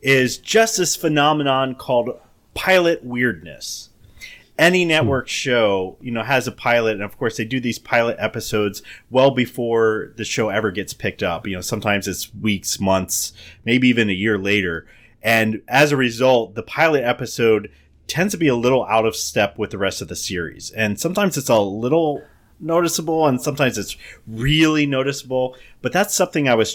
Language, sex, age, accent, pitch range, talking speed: English, male, 30-49, American, 100-135 Hz, 175 wpm